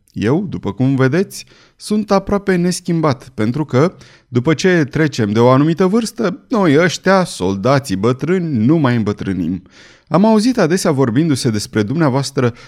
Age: 30-49